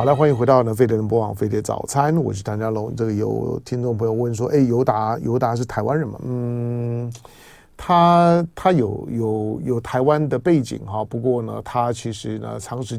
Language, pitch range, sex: Chinese, 115-140 Hz, male